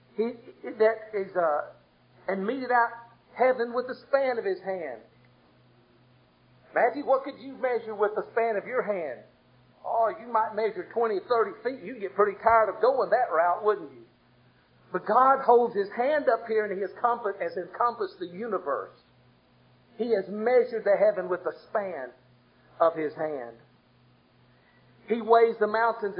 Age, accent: 50-69, American